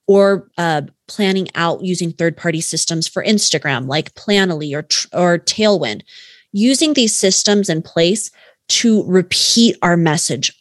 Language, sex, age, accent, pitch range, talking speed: English, female, 30-49, American, 175-225 Hz, 130 wpm